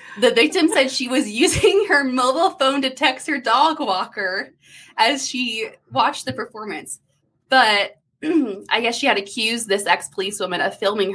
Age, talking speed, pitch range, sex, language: 20-39, 160 wpm, 195-260 Hz, female, English